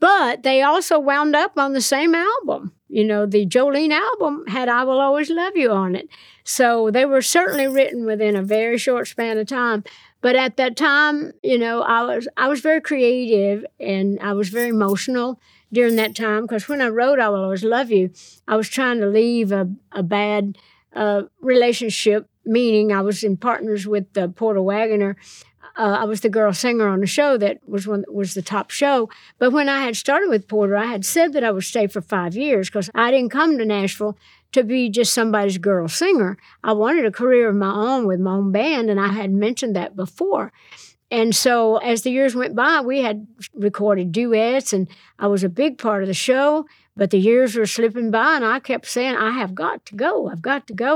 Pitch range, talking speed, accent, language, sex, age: 205-260 Hz, 215 wpm, American, English, female, 60-79